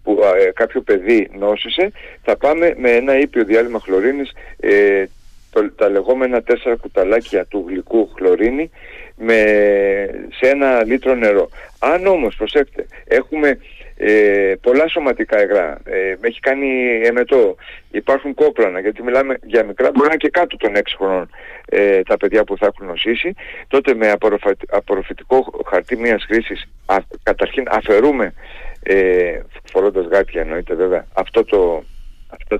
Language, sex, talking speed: Greek, male, 140 wpm